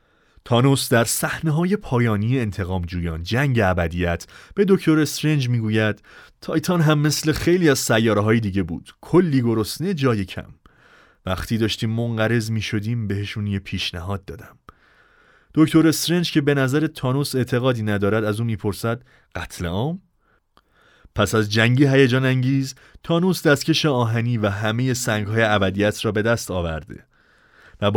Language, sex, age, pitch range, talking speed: Persian, male, 30-49, 100-135 Hz, 135 wpm